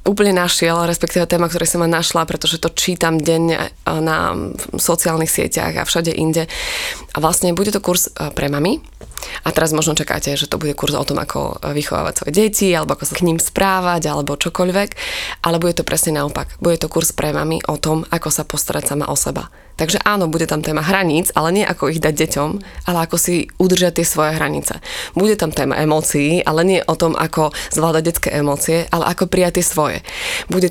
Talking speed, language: 195 wpm, Slovak